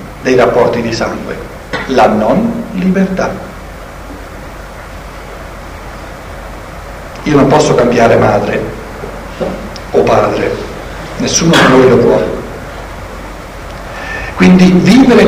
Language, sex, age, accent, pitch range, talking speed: Italian, male, 60-79, native, 155-215 Hz, 85 wpm